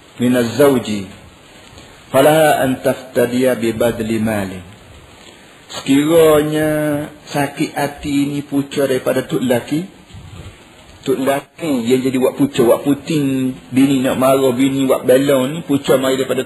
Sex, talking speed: male, 120 wpm